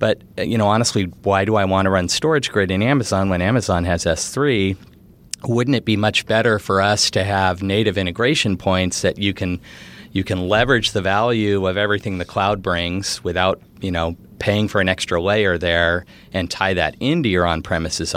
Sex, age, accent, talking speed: male, 40-59, American, 190 wpm